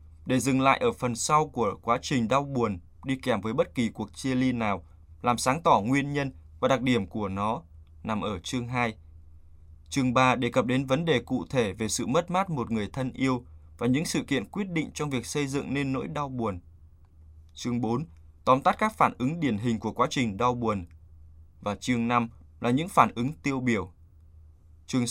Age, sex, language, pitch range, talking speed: 20-39, male, Vietnamese, 80-135 Hz, 215 wpm